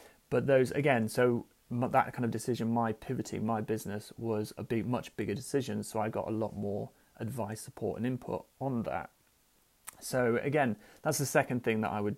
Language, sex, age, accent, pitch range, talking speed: English, male, 30-49, British, 110-125 Hz, 190 wpm